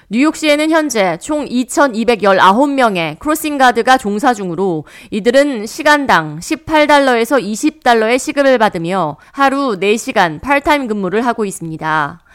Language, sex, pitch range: Korean, female, 185-270 Hz